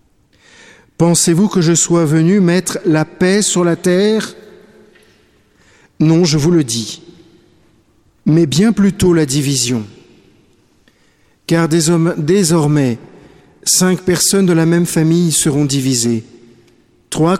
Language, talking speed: French, 110 wpm